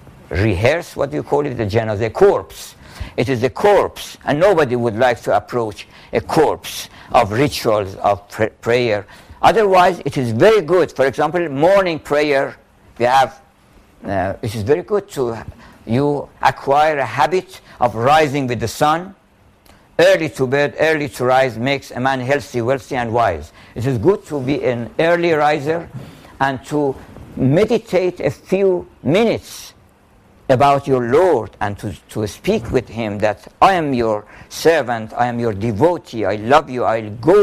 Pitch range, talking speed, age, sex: 115-155 Hz, 165 wpm, 60-79, male